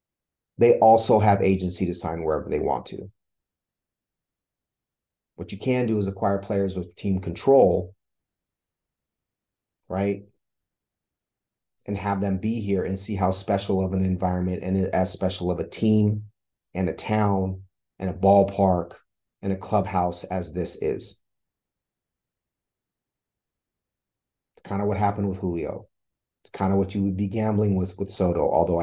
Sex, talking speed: male, 145 wpm